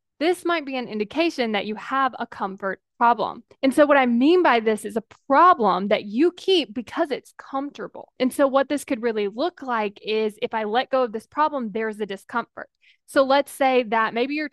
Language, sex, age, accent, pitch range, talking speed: English, female, 10-29, American, 225-285 Hz, 215 wpm